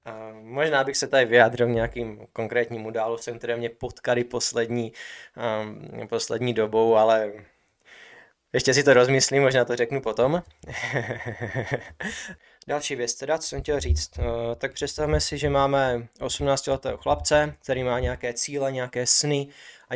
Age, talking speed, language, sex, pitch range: 20-39, 140 wpm, Czech, male, 120-140 Hz